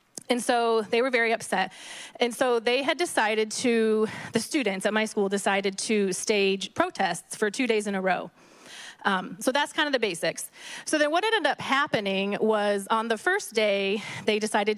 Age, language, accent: 20-39, English, American